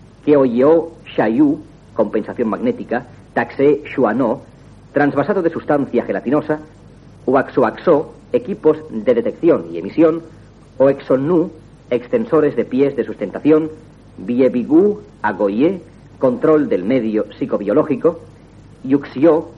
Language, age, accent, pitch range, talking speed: Spanish, 40-59, Spanish, 125-170 Hz, 90 wpm